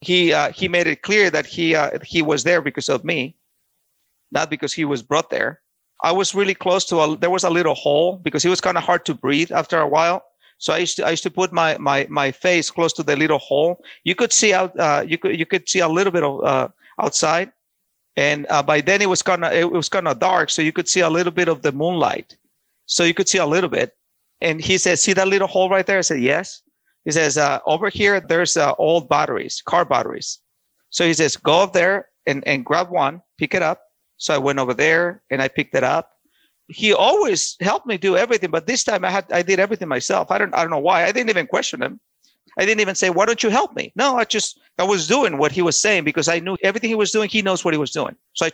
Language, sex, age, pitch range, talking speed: English, male, 50-69, 160-195 Hz, 260 wpm